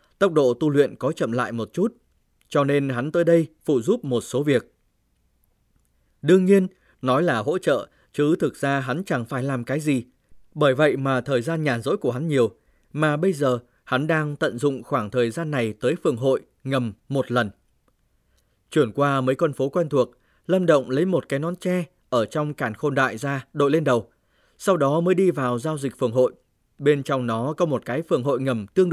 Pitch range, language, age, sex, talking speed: 125-165 Hz, Vietnamese, 20-39, male, 215 wpm